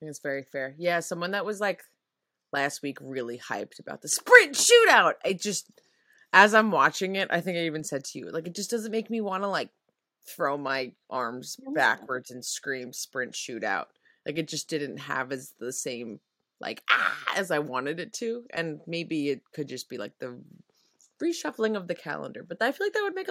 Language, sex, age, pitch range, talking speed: English, female, 20-39, 150-250 Hz, 210 wpm